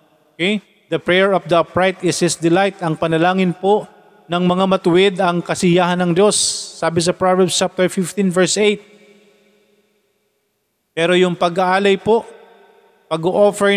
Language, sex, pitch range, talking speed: Filipino, male, 145-180 Hz, 135 wpm